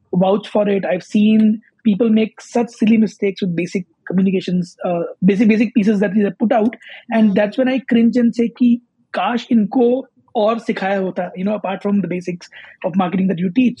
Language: English